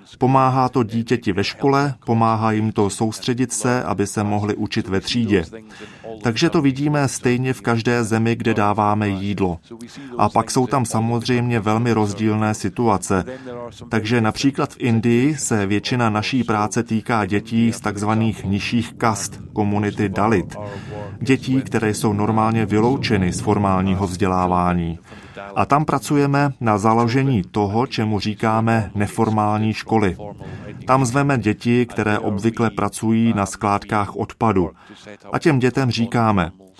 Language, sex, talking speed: Czech, male, 130 wpm